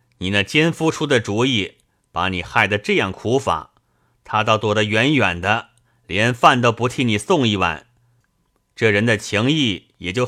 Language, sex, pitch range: Chinese, male, 100-125 Hz